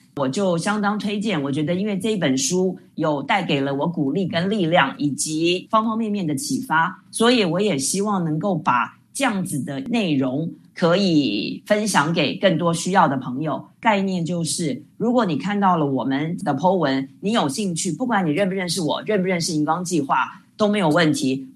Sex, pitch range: female, 150-200 Hz